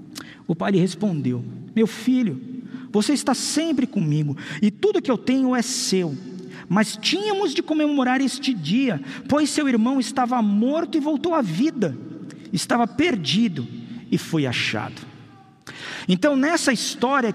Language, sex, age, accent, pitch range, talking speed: Portuguese, male, 50-69, Brazilian, 210-290 Hz, 140 wpm